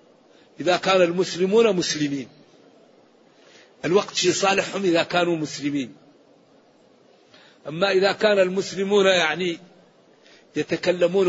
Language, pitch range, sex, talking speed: Arabic, 155-195 Hz, male, 85 wpm